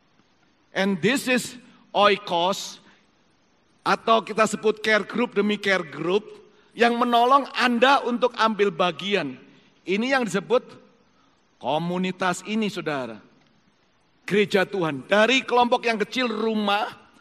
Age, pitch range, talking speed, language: 40-59, 185-245 Hz, 110 wpm, Indonesian